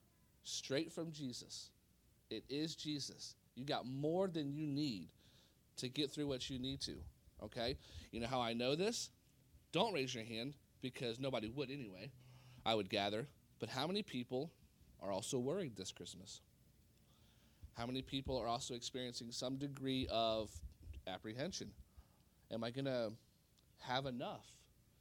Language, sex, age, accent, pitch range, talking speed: English, male, 30-49, American, 110-145 Hz, 150 wpm